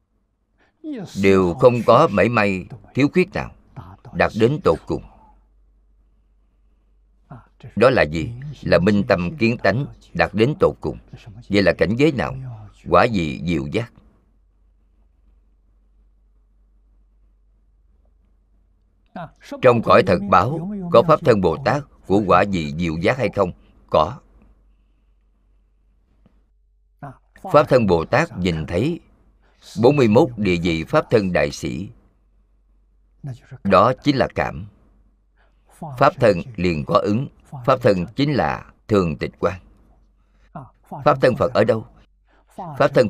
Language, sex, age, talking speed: Vietnamese, male, 50-69, 120 wpm